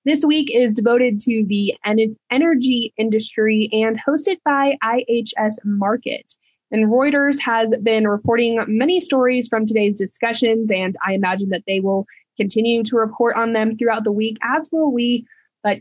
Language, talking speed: English, 155 wpm